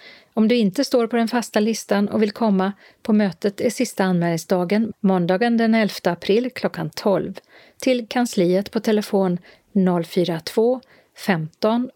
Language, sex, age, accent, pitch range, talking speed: Swedish, female, 40-59, native, 190-230 Hz, 140 wpm